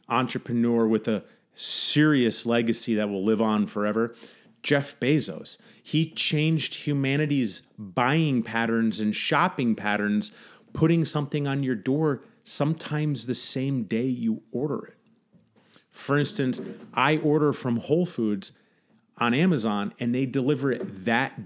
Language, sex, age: English, male, 30-49